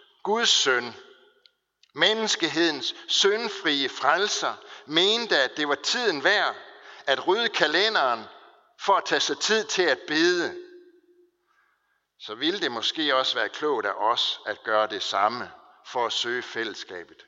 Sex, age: male, 60-79